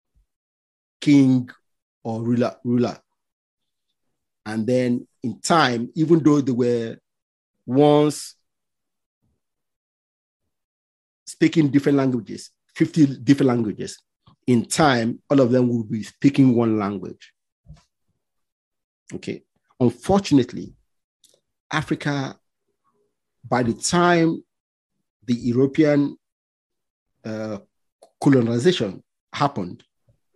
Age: 50-69